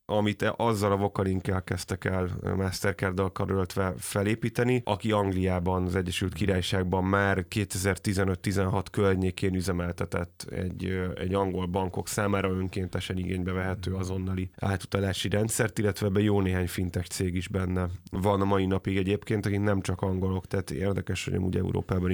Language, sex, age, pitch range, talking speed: Hungarian, male, 30-49, 95-105 Hz, 135 wpm